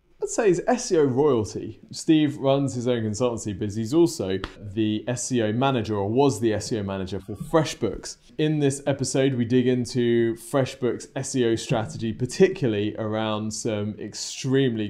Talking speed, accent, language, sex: 145 wpm, British, English, male